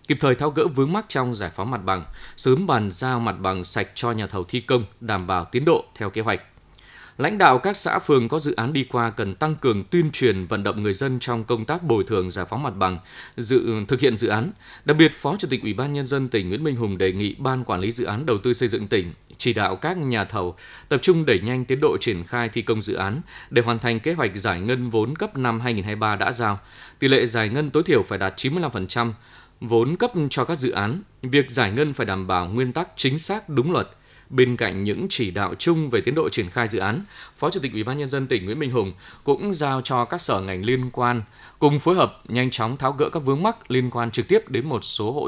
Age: 20-39